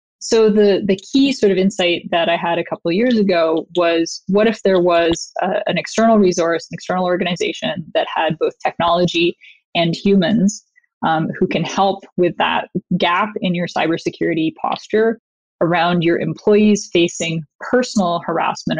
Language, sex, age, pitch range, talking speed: English, female, 20-39, 170-215 Hz, 155 wpm